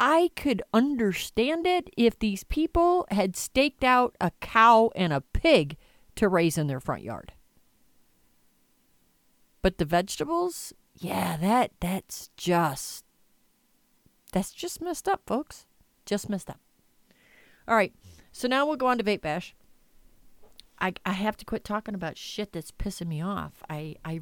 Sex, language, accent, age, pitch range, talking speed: female, English, American, 40-59, 160-210 Hz, 150 wpm